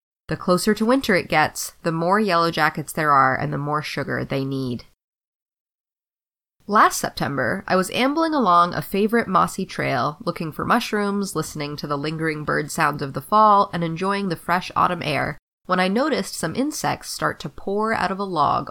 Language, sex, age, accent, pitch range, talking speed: English, female, 20-39, American, 150-205 Hz, 185 wpm